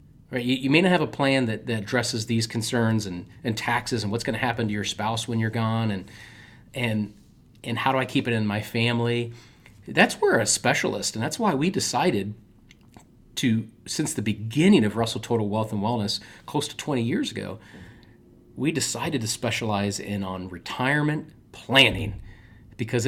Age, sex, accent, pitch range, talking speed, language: 30-49, male, American, 105-125 Hz, 185 wpm, English